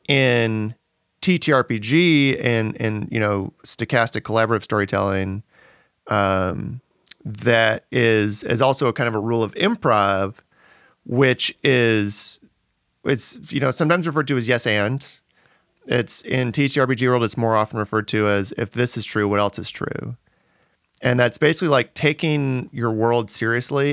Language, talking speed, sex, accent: English, 150 wpm, male, American